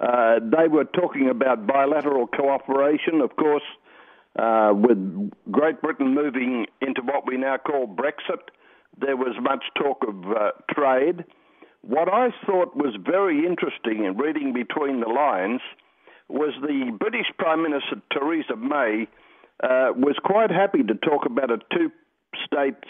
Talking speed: 140 wpm